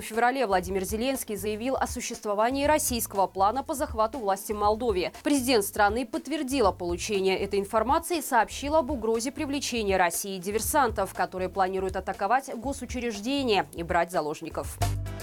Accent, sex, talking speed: native, female, 130 wpm